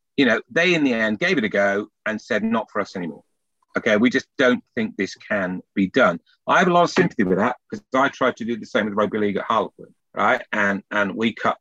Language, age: English, 40-59